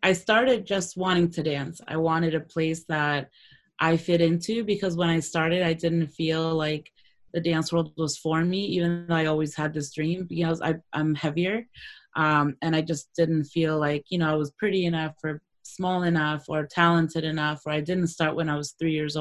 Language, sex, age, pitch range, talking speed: English, female, 20-39, 155-175 Hz, 210 wpm